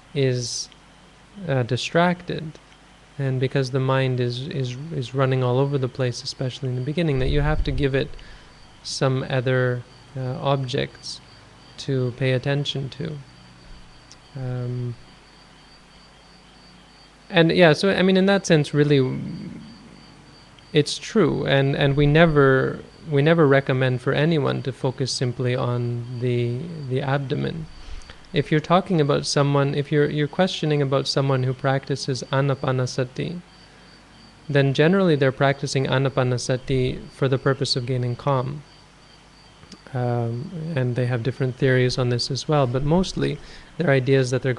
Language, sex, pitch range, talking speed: English, male, 130-150 Hz, 140 wpm